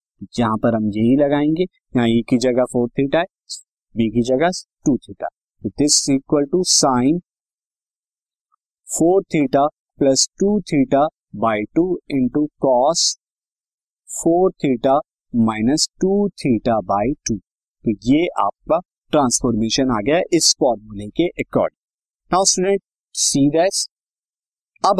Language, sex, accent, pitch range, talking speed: Hindi, male, native, 120-175 Hz, 120 wpm